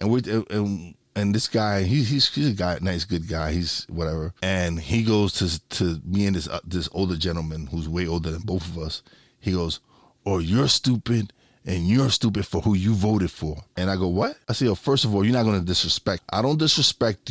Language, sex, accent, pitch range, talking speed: English, male, American, 90-120 Hz, 225 wpm